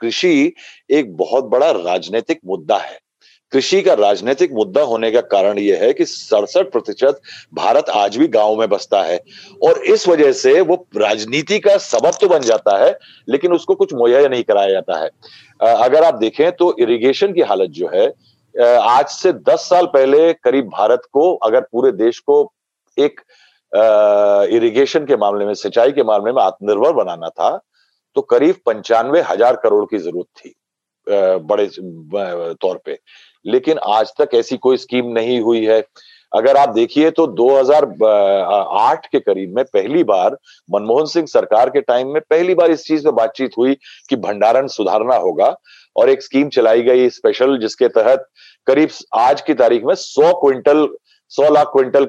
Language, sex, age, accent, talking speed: Hindi, male, 40-59, native, 165 wpm